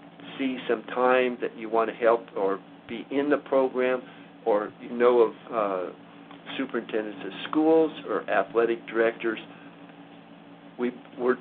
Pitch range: 110-125 Hz